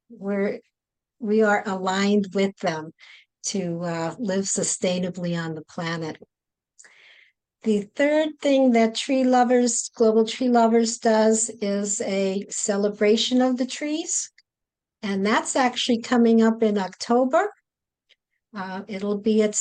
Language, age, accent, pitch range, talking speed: English, 60-79, American, 200-240 Hz, 120 wpm